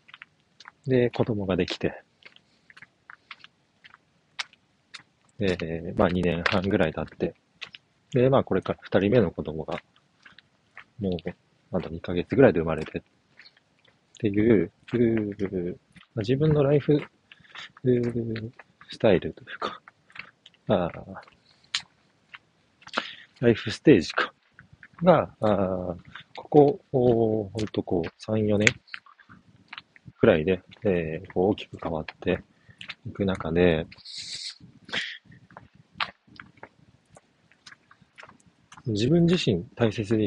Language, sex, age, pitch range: Japanese, male, 40-59, 90-115 Hz